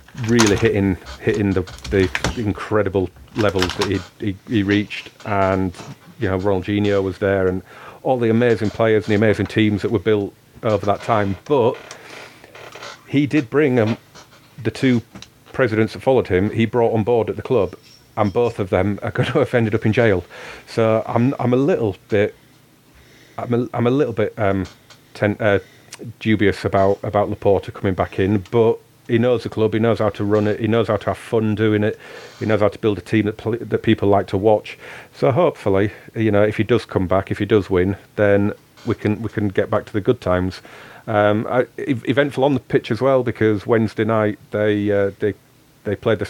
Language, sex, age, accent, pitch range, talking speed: English, male, 40-59, British, 100-115 Hz, 205 wpm